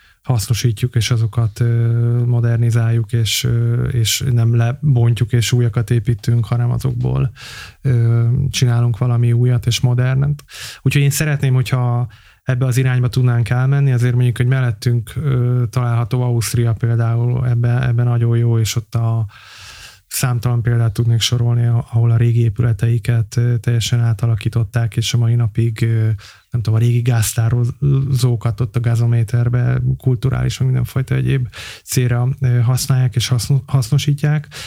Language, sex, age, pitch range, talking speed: Hungarian, male, 20-39, 115-130 Hz, 120 wpm